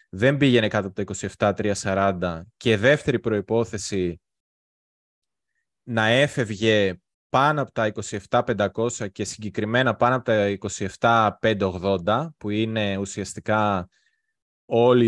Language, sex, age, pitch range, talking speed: Greek, male, 20-39, 100-125 Hz, 100 wpm